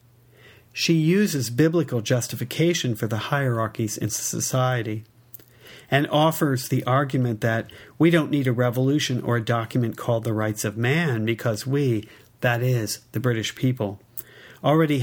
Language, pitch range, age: English, 110-135 Hz, 50-69